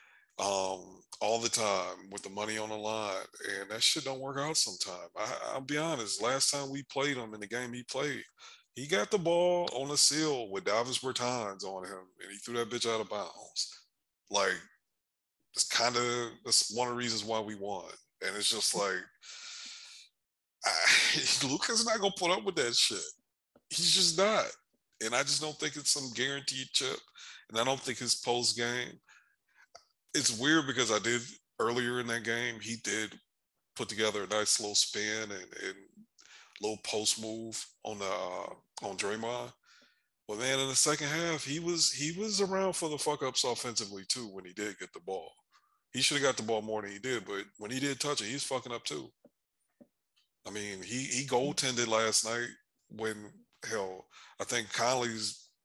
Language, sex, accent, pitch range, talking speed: English, male, American, 110-145 Hz, 190 wpm